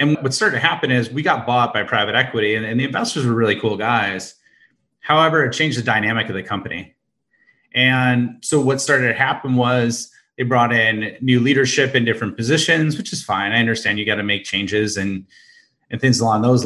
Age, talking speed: 30-49, 210 wpm